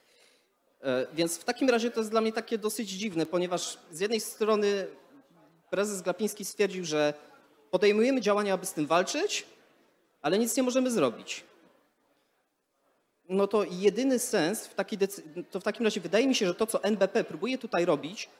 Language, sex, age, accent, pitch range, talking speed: Polish, male, 30-49, native, 160-220 Hz, 165 wpm